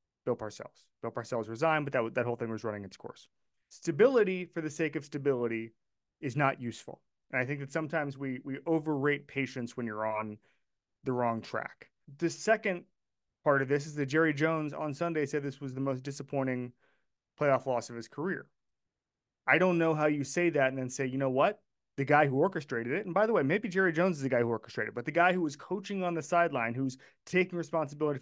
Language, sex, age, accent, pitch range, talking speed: English, male, 30-49, American, 130-160 Hz, 220 wpm